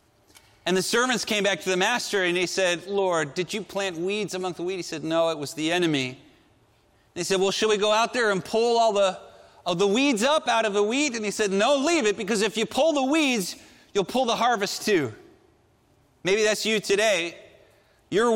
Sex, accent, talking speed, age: male, American, 225 wpm, 40-59